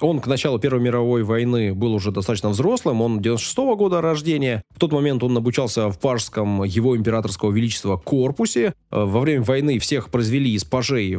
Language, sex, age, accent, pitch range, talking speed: Russian, male, 20-39, native, 105-140 Hz, 170 wpm